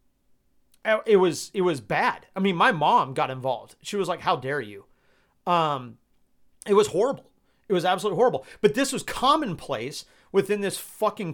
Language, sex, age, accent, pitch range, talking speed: English, male, 40-59, American, 145-195 Hz, 170 wpm